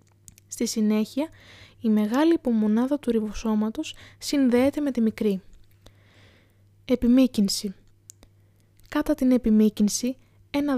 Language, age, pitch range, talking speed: Greek, 20-39, 205-260 Hz, 90 wpm